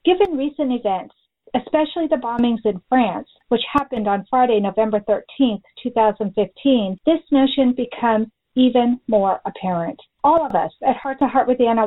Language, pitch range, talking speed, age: English, 215-285 Hz, 150 wpm, 50-69